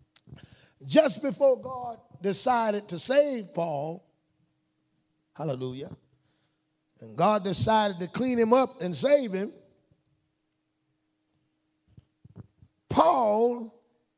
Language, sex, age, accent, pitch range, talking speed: English, male, 50-69, American, 195-250 Hz, 80 wpm